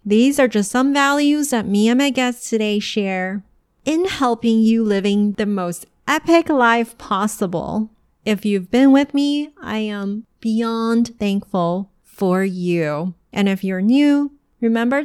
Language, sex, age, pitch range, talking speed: English, female, 30-49, 200-250 Hz, 150 wpm